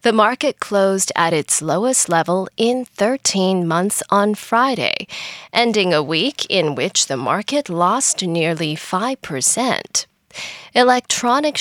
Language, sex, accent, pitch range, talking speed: English, female, American, 170-240 Hz, 120 wpm